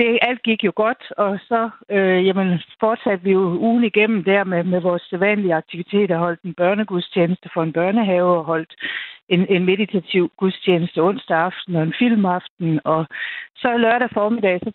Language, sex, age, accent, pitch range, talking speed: Danish, female, 60-79, native, 180-220 Hz, 170 wpm